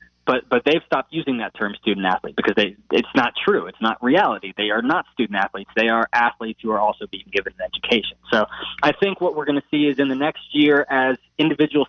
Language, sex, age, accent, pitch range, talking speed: English, male, 20-39, American, 115-145 Hz, 225 wpm